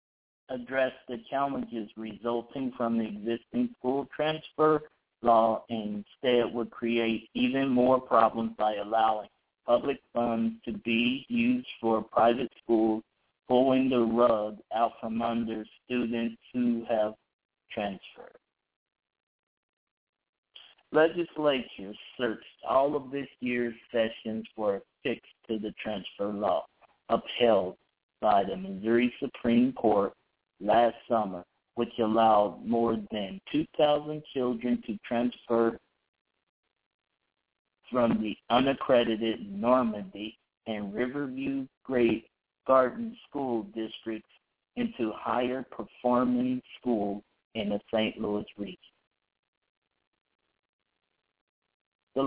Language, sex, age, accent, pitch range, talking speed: English, male, 60-79, American, 110-135 Hz, 100 wpm